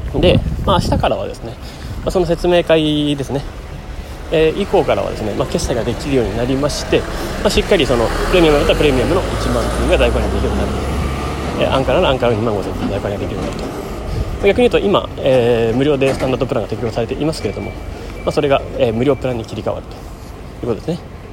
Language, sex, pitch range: Japanese, male, 100-160 Hz